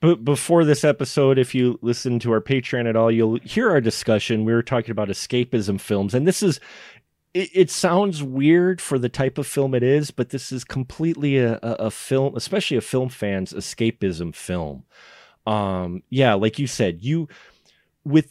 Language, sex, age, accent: English, male, 30-49, American